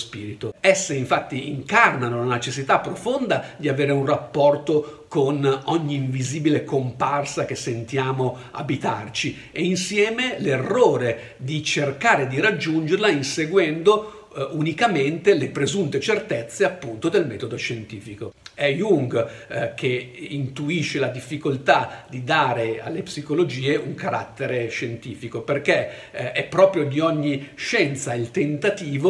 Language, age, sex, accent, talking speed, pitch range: Italian, 50-69, male, native, 120 wpm, 130-180 Hz